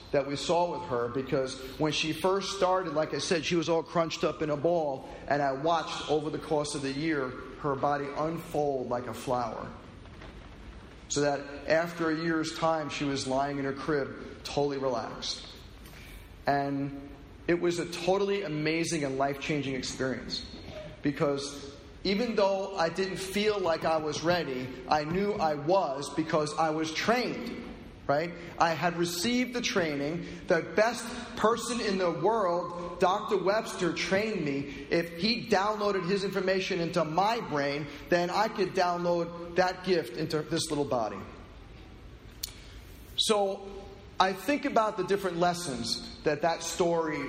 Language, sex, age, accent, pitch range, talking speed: English, male, 40-59, American, 140-185 Hz, 155 wpm